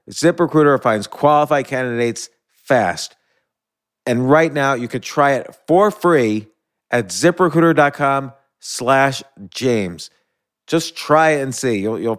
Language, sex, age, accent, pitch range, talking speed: English, male, 40-59, American, 125-160 Hz, 125 wpm